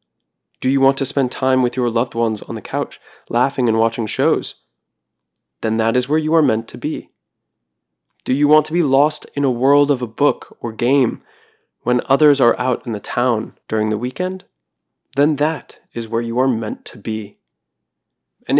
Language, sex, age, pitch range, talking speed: English, male, 20-39, 115-145 Hz, 195 wpm